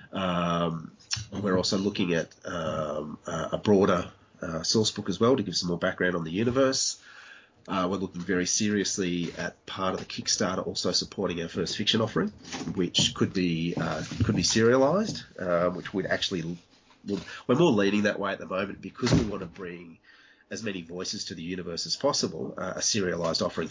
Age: 30-49